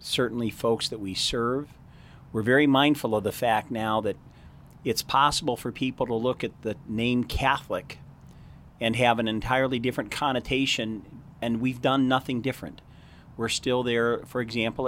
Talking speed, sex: 155 wpm, male